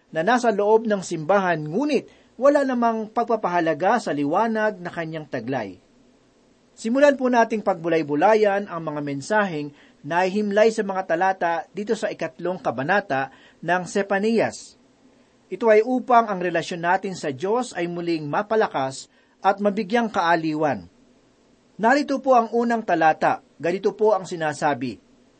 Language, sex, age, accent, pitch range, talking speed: Filipino, male, 40-59, native, 160-220 Hz, 130 wpm